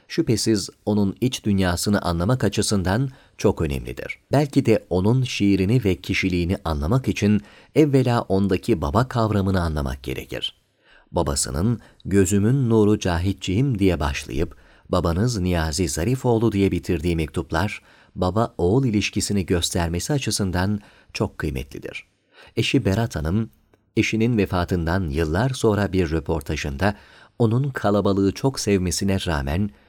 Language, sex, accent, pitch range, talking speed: Turkish, male, native, 85-120 Hz, 110 wpm